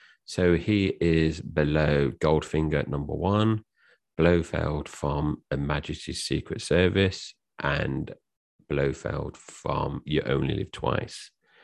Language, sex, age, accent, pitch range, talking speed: English, male, 40-59, British, 75-100 Hz, 105 wpm